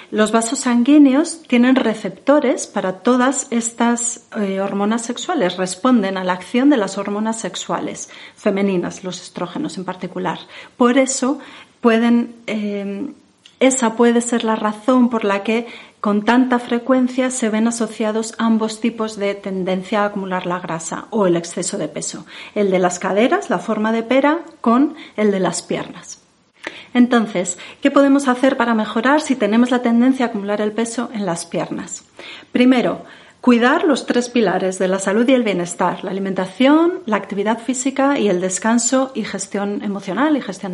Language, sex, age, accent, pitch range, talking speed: Spanish, female, 40-59, Spanish, 200-260 Hz, 160 wpm